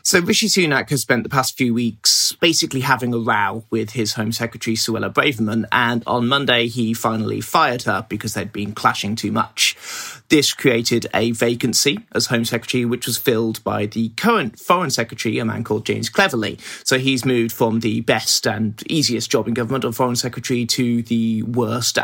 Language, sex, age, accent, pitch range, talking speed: English, male, 30-49, British, 110-130 Hz, 190 wpm